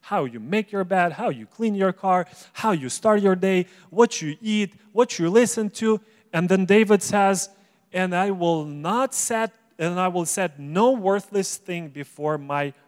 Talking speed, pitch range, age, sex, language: 185 wpm, 145-185 Hz, 30-49, male, English